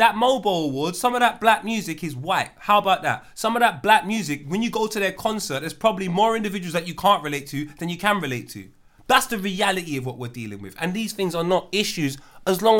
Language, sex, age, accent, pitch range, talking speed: English, male, 20-39, British, 185-235 Hz, 255 wpm